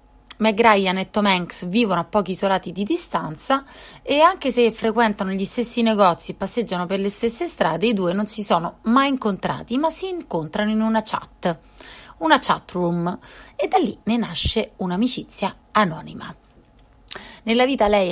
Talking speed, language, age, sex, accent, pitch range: 165 wpm, Italian, 30-49, female, native, 180-230 Hz